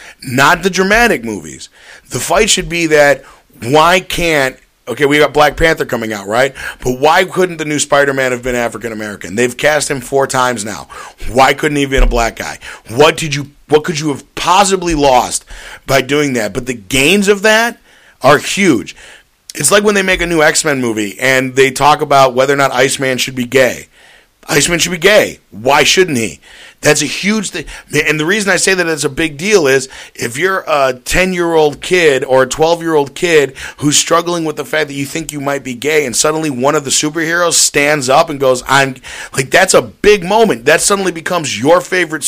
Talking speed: 210 wpm